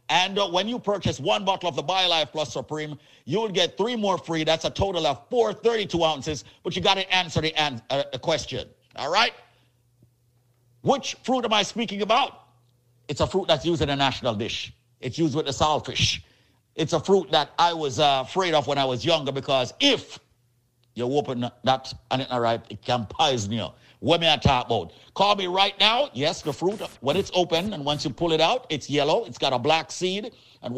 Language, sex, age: English, male, 50-69